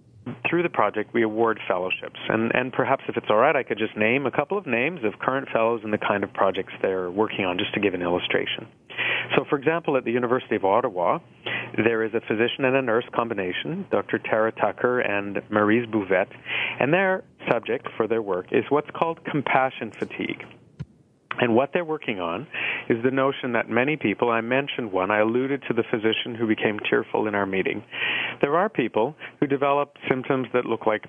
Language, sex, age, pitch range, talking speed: English, male, 40-59, 110-135 Hz, 200 wpm